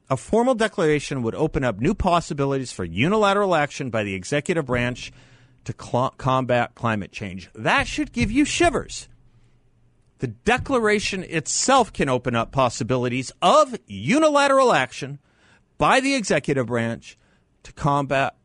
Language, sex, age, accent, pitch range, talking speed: English, male, 50-69, American, 110-170 Hz, 130 wpm